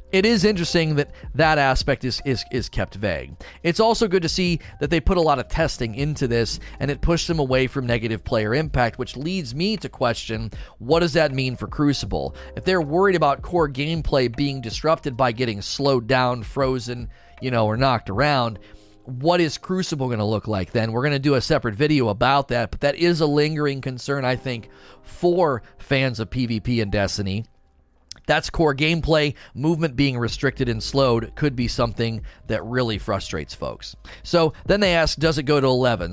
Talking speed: 195 wpm